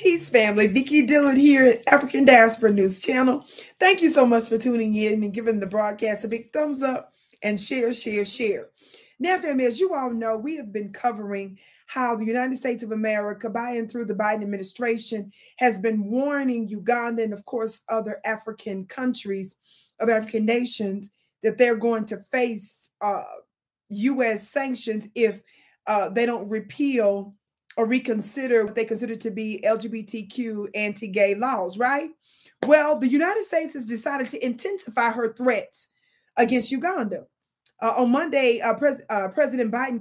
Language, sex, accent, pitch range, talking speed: English, female, American, 220-270 Hz, 160 wpm